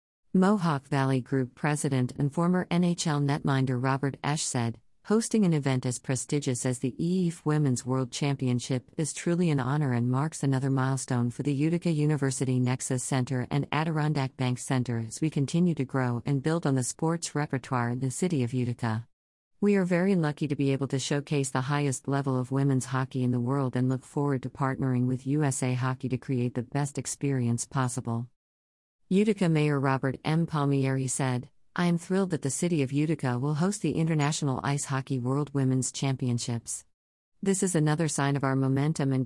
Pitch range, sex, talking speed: 130-155 Hz, female, 180 wpm